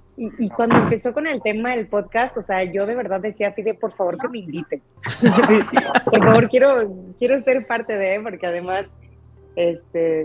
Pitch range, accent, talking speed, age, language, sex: 155-200 Hz, Mexican, 195 wpm, 30-49, Spanish, female